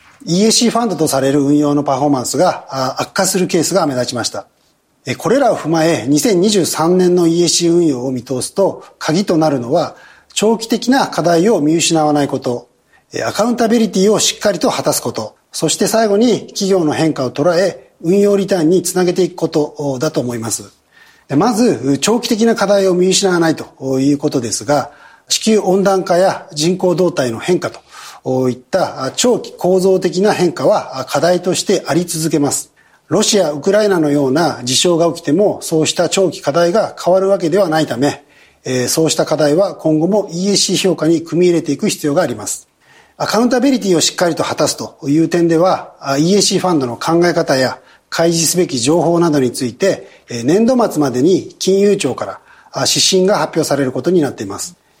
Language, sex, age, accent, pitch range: Japanese, male, 40-59, native, 145-190 Hz